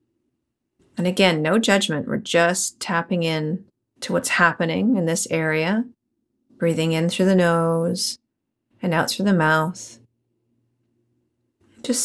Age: 30-49